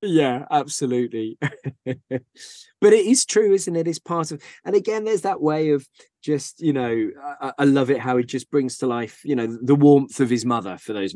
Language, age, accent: English, 20-39, British